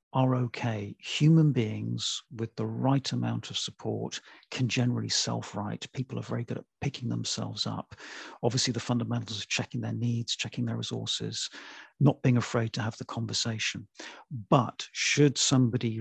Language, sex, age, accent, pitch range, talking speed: English, male, 40-59, British, 115-135 Hz, 155 wpm